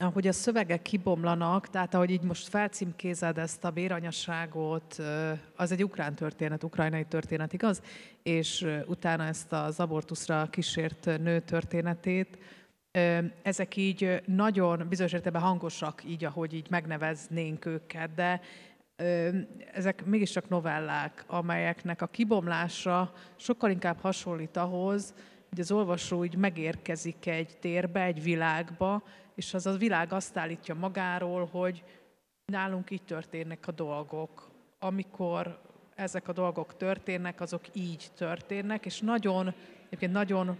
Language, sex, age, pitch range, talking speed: Hungarian, female, 30-49, 170-190 Hz, 120 wpm